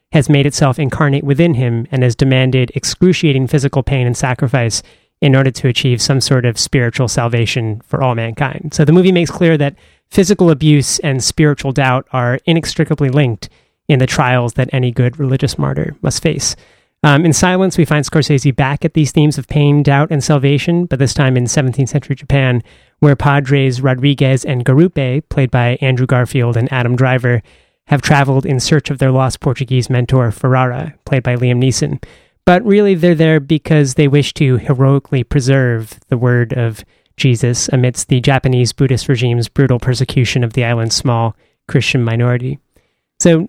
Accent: American